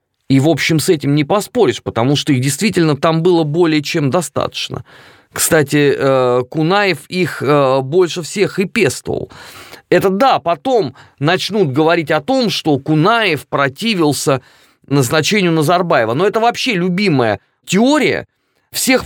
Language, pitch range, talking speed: Russian, 145-225 Hz, 130 wpm